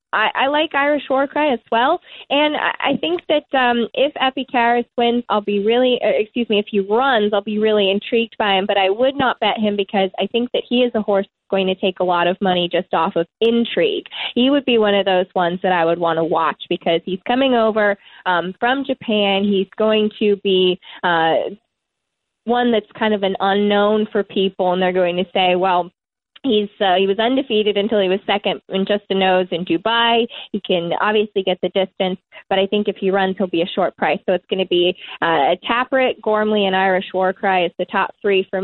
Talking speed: 225 wpm